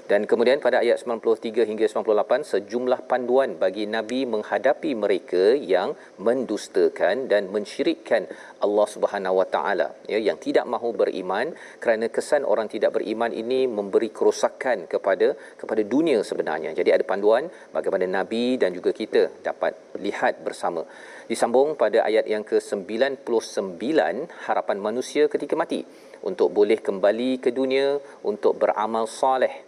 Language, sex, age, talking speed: Malayalam, male, 40-59, 135 wpm